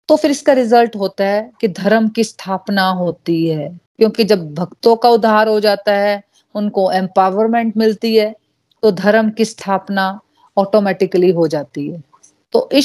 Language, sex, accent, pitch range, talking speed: Hindi, female, native, 190-225 Hz, 160 wpm